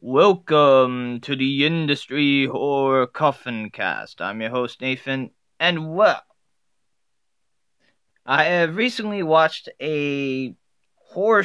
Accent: American